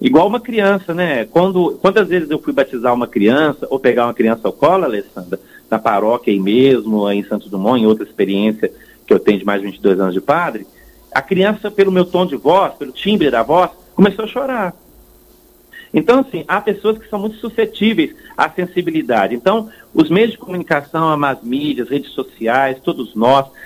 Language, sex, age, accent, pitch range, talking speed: Portuguese, male, 40-59, Brazilian, 120-185 Hz, 185 wpm